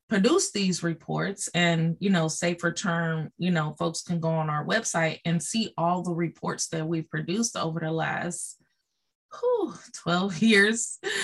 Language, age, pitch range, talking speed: English, 20-39, 165-195 Hz, 160 wpm